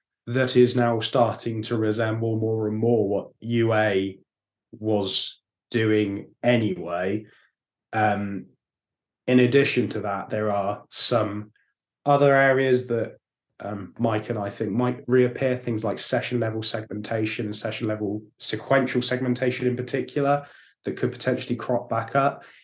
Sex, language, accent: male, English, British